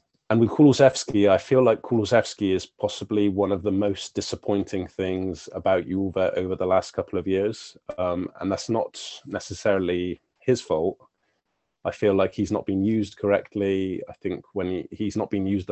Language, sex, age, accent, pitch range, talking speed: English, male, 20-39, British, 90-100 Hz, 175 wpm